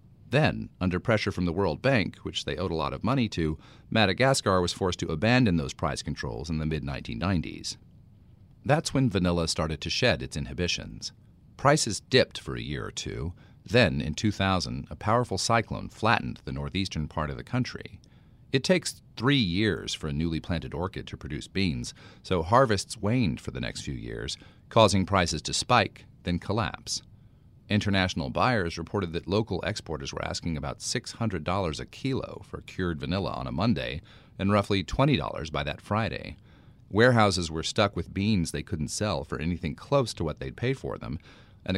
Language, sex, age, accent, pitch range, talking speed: English, male, 40-59, American, 80-115 Hz, 175 wpm